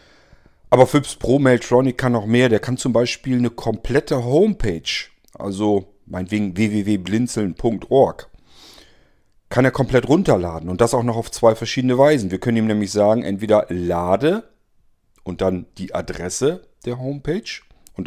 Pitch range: 100-130 Hz